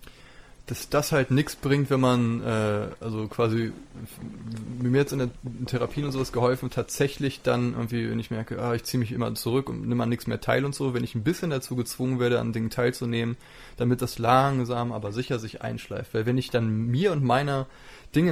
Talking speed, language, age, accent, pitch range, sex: 205 wpm, German, 20-39, German, 115-130 Hz, male